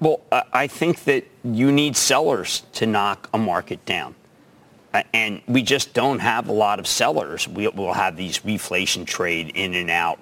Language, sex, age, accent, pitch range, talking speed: English, male, 50-69, American, 90-135 Hz, 170 wpm